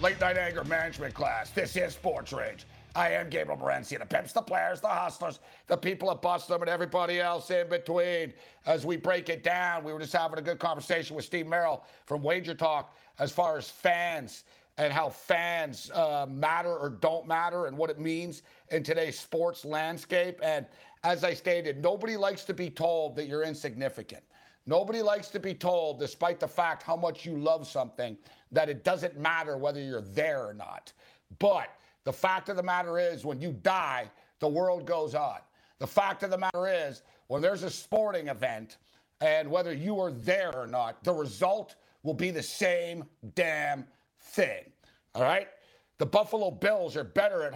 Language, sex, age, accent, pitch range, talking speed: English, male, 50-69, American, 155-180 Hz, 190 wpm